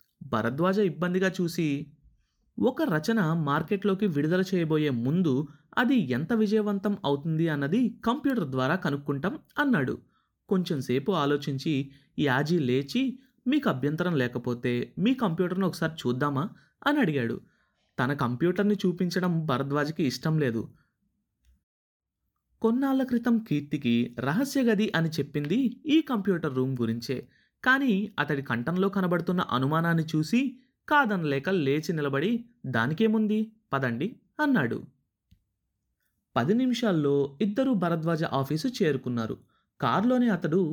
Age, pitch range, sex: 30-49, 140-220 Hz, male